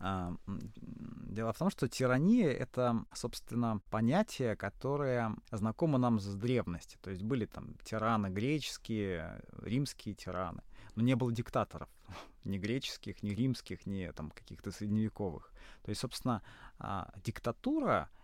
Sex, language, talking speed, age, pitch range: male, Russian, 125 wpm, 20-39, 100-130 Hz